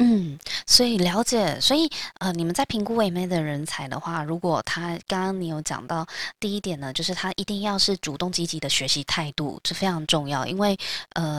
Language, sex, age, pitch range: Chinese, female, 20-39, 155-205 Hz